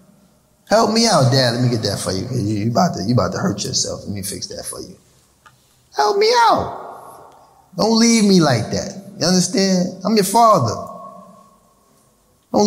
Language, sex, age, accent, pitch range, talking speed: English, male, 20-39, American, 120-185 Hz, 180 wpm